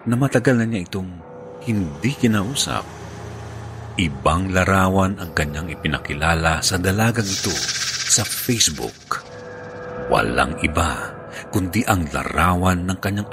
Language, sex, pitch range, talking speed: Filipino, male, 80-120 Hz, 110 wpm